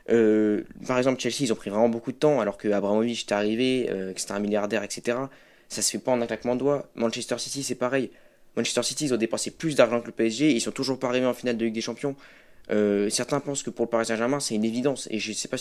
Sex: male